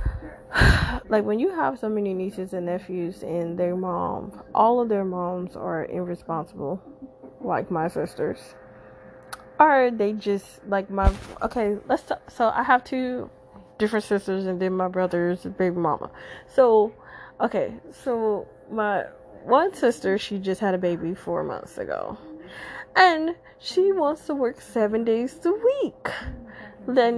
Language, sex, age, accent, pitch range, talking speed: English, female, 20-39, American, 185-250 Hz, 145 wpm